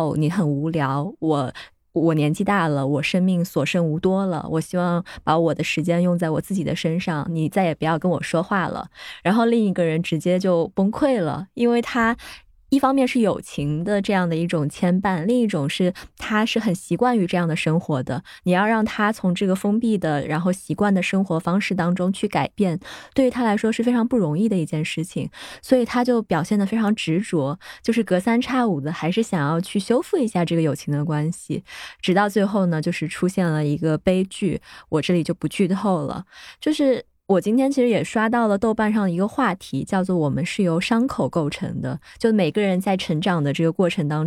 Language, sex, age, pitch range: Chinese, female, 20-39, 165-215 Hz